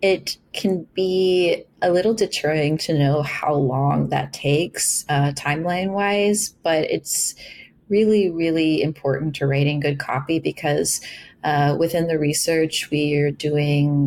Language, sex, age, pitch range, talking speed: English, female, 30-49, 145-170 Hz, 130 wpm